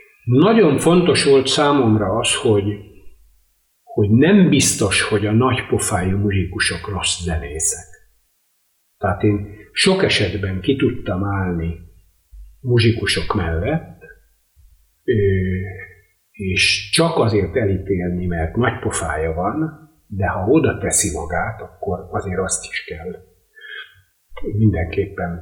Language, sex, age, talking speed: Hungarian, male, 50-69, 105 wpm